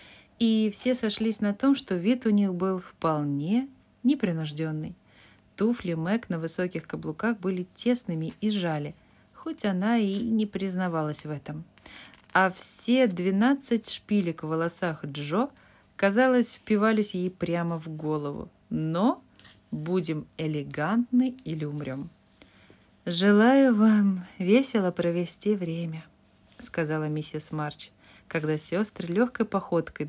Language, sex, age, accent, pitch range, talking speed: Russian, female, 20-39, native, 165-240 Hz, 115 wpm